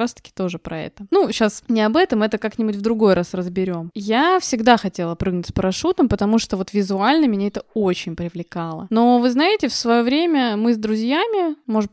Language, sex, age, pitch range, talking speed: Russian, female, 20-39, 200-260 Hz, 195 wpm